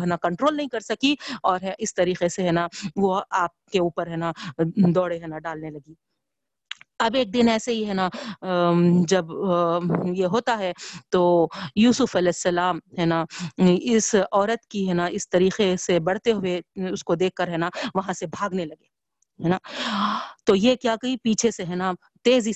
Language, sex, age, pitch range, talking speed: Urdu, female, 40-59, 175-225 Hz, 175 wpm